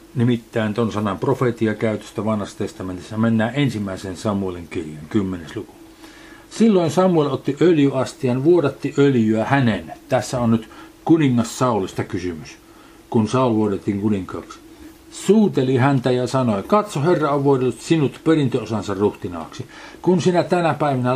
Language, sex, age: Finnish, male, 50-69